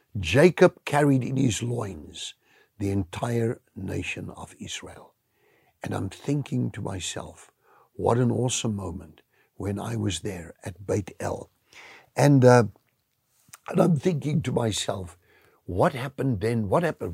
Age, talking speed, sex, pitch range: 60-79, 135 wpm, male, 105-160 Hz